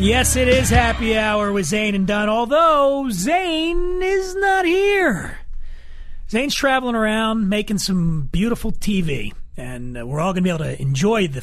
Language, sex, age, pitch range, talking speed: English, male, 30-49, 145-210 Hz, 165 wpm